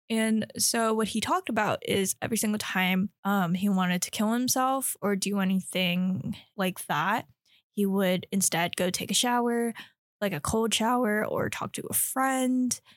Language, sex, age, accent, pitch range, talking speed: English, female, 10-29, American, 195-250 Hz, 170 wpm